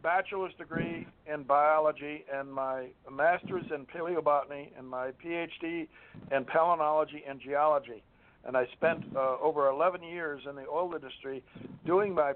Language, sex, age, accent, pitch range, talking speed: English, male, 60-79, American, 140-165 Hz, 140 wpm